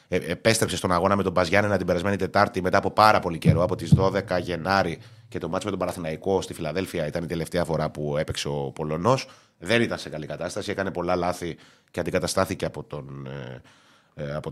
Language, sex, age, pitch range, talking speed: Greek, male, 30-49, 85-105 Hz, 195 wpm